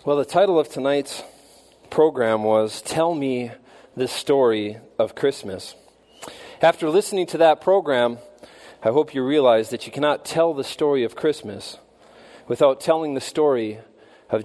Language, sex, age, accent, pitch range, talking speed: English, male, 40-59, American, 125-175 Hz, 145 wpm